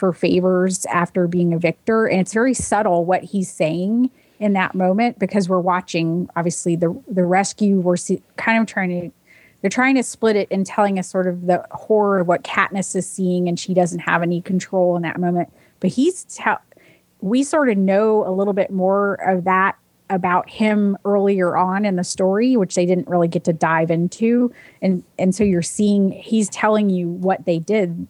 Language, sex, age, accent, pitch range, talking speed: English, female, 30-49, American, 175-200 Hz, 200 wpm